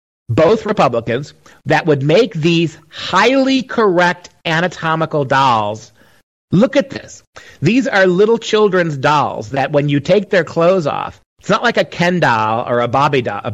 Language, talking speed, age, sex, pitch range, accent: English, 145 wpm, 40-59, male, 135-185 Hz, American